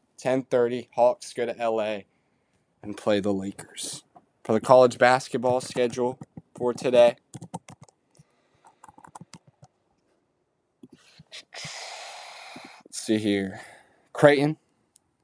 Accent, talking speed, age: American, 80 wpm, 10-29